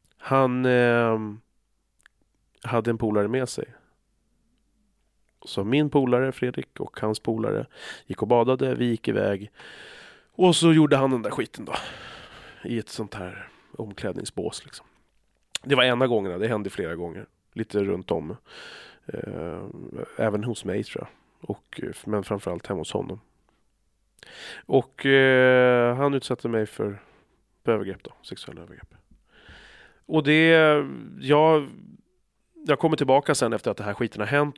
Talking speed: 140 wpm